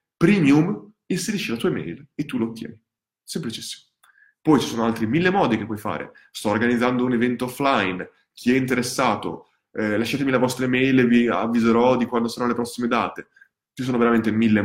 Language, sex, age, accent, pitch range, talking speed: Italian, male, 20-39, native, 115-160 Hz, 190 wpm